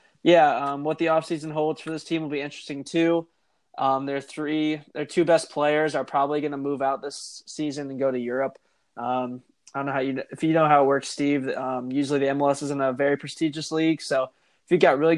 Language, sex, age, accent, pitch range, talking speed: English, male, 20-39, American, 135-150 Hz, 240 wpm